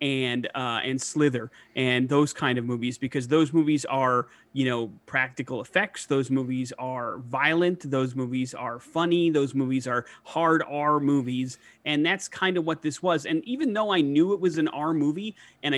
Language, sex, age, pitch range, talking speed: English, male, 30-49, 130-160 Hz, 185 wpm